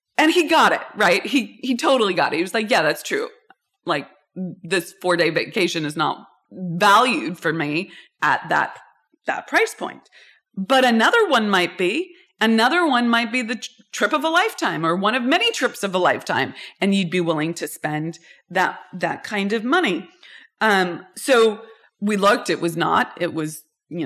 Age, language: 30-49, English